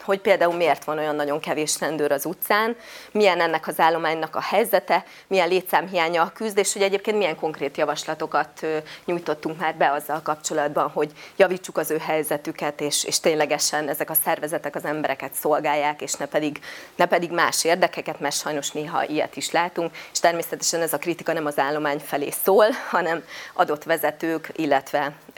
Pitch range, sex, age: 155-195 Hz, female, 30-49